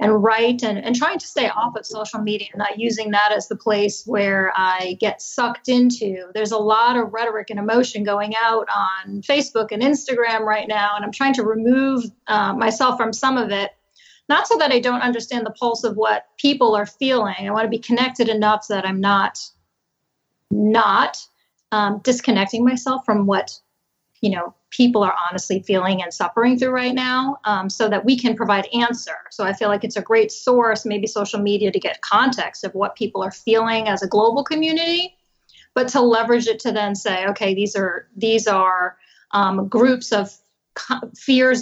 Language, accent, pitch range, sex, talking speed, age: English, American, 205-240 Hz, female, 195 wpm, 30-49